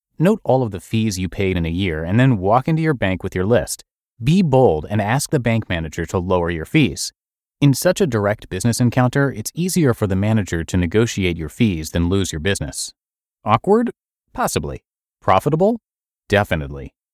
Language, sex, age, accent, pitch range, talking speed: English, male, 30-49, American, 90-130 Hz, 185 wpm